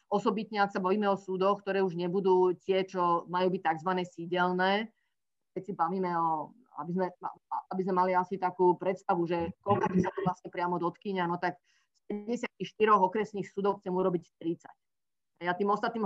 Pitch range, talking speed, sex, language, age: 180-215 Hz, 175 wpm, female, Slovak, 30-49